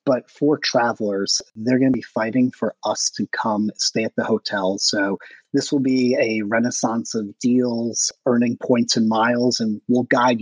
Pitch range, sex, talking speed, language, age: 110-150 Hz, male, 180 wpm, English, 30-49